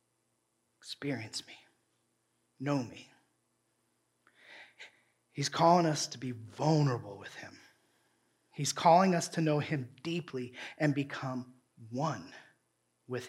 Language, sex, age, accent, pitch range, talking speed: English, male, 40-59, American, 120-150 Hz, 105 wpm